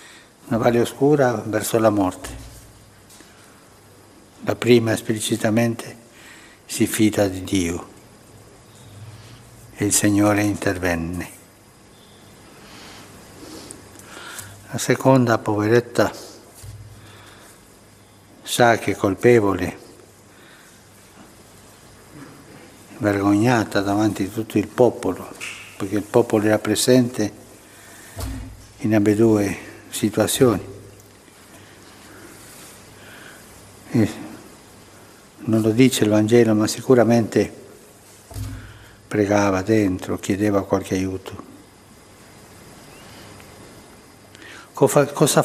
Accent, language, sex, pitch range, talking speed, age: native, Italian, male, 100-120 Hz, 70 wpm, 60-79